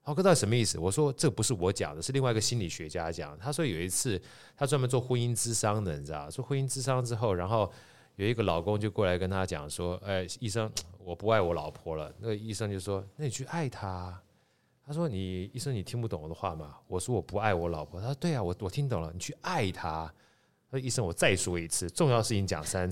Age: 30-49